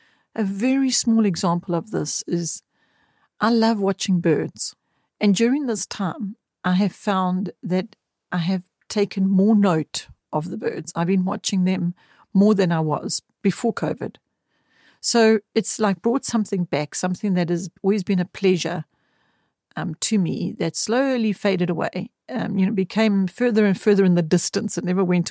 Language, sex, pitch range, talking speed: English, female, 175-210 Hz, 165 wpm